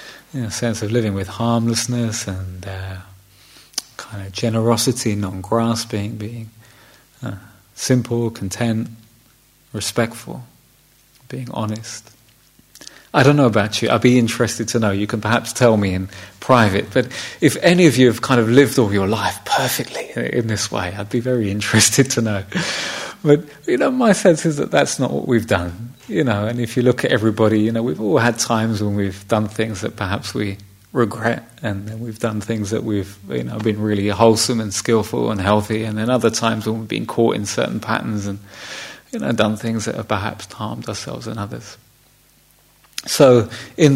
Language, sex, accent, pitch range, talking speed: English, male, British, 105-125 Hz, 185 wpm